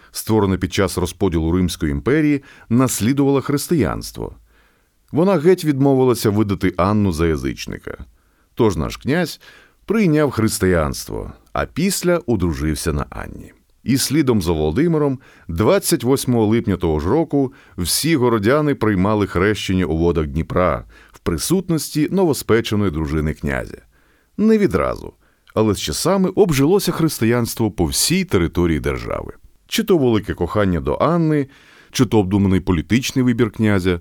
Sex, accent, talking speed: male, native, 120 wpm